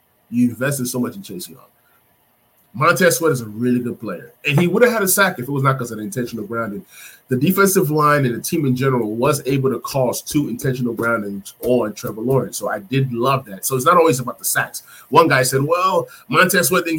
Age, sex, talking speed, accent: 30-49, male, 235 wpm, American